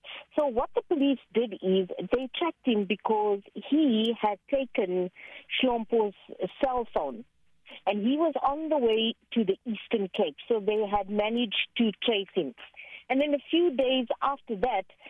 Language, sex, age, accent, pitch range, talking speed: English, female, 50-69, Indian, 200-275 Hz, 160 wpm